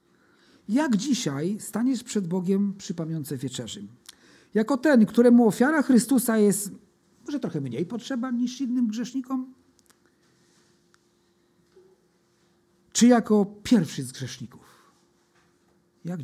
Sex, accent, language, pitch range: male, native, Polish, 180-235 Hz